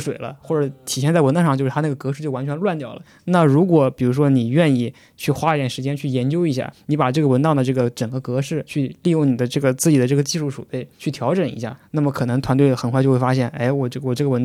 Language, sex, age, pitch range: Chinese, male, 20-39, 130-155 Hz